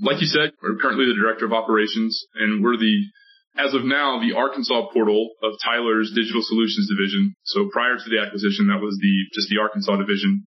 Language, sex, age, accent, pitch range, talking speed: English, male, 20-39, American, 110-155 Hz, 200 wpm